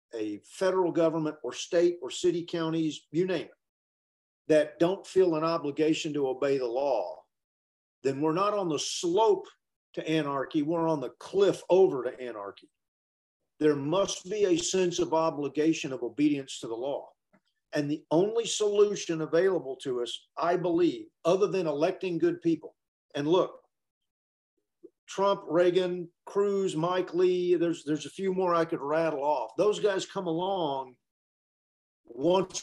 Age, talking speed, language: 50-69, 150 wpm, English